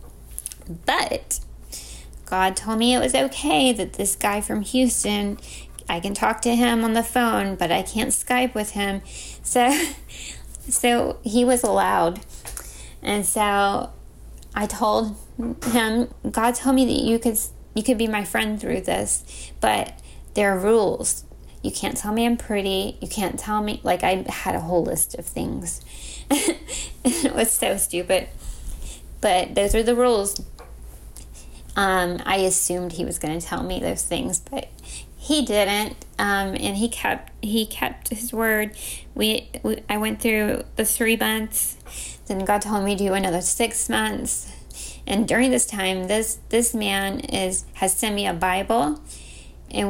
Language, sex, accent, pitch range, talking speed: English, female, American, 175-230 Hz, 160 wpm